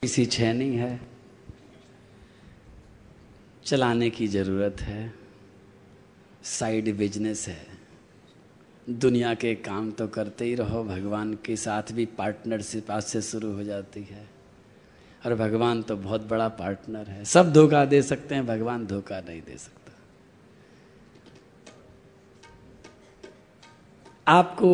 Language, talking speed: Hindi, 110 wpm